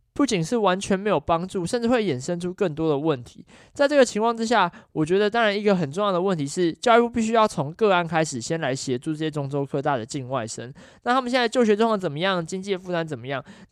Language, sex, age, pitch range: Chinese, male, 20-39, 155-225 Hz